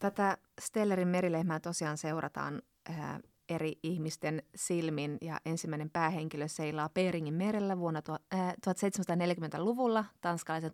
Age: 20-39